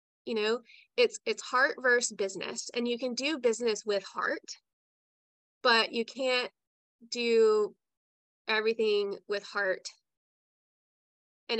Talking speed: 115 wpm